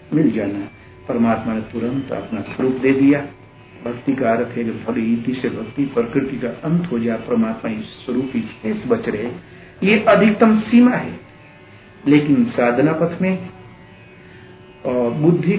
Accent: native